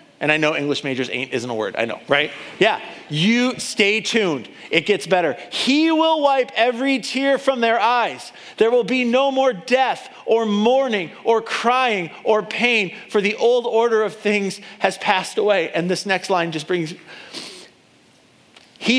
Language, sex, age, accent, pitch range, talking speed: English, male, 40-59, American, 155-215 Hz, 175 wpm